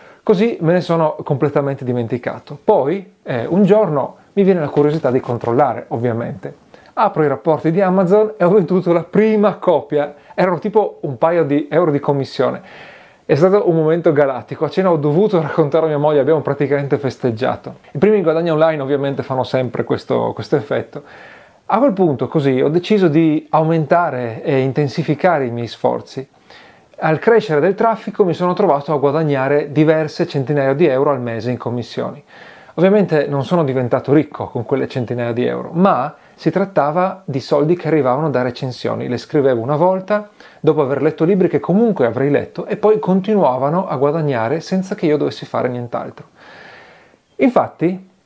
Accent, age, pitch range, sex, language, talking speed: native, 30-49, 135-180 Hz, male, Italian, 170 wpm